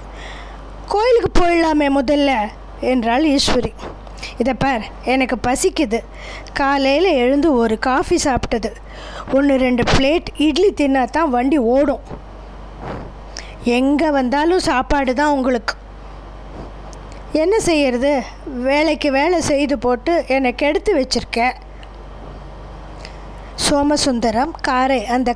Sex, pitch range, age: female, 245-295 Hz, 20-39